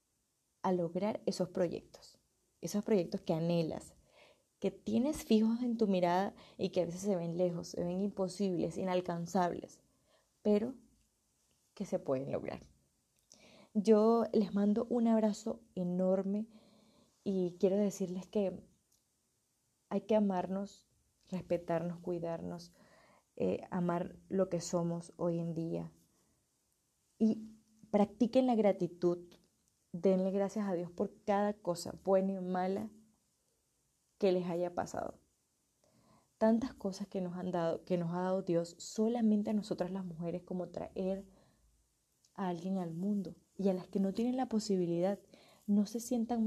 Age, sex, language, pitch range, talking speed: 20-39, female, Spanish, 180-215 Hz, 135 wpm